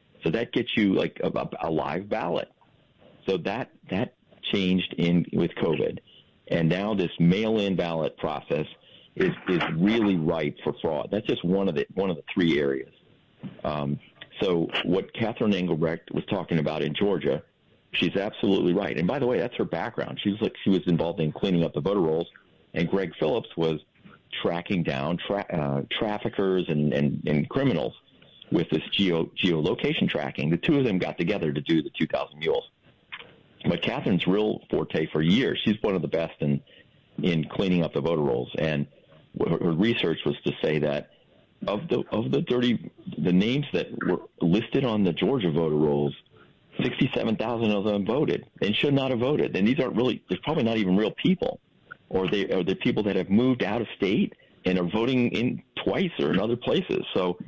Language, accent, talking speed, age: English, American, 190 wpm, 40-59